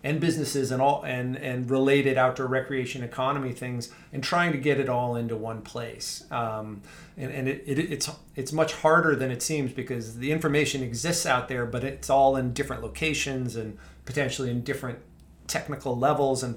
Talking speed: 185 wpm